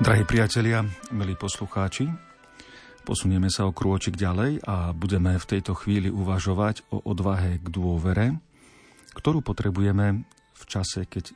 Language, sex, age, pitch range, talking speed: Slovak, male, 40-59, 90-105 Hz, 125 wpm